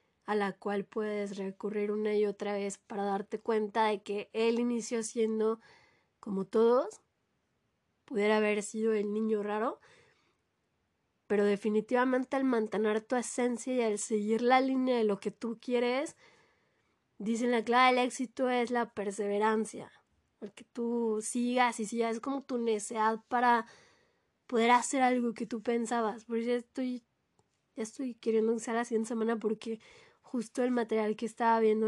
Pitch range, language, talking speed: 220-255 Hz, Spanish, 160 wpm